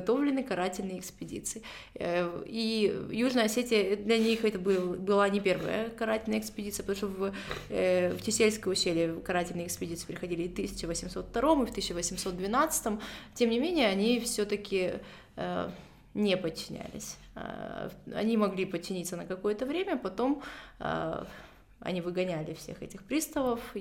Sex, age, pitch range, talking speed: female, 20-39, 180-225 Hz, 120 wpm